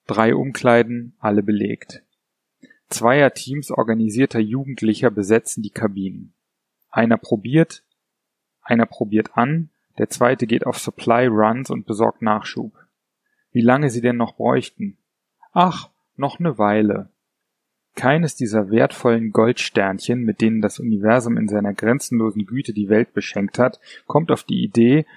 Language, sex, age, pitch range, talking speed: German, male, 30-49, 110-130 Hz, 130 wpm